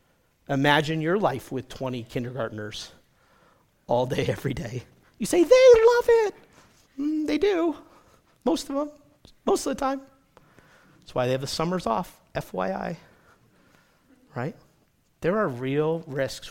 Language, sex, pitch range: English, male, 135-195 Hz